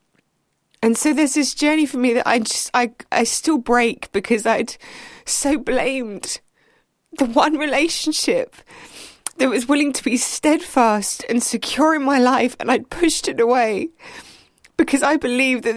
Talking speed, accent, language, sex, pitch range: 155 wpm, British, English, female, 210-255 Hz